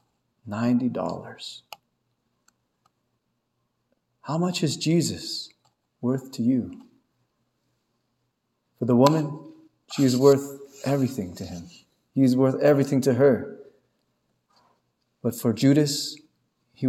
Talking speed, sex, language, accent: 90 wpm, male, English, American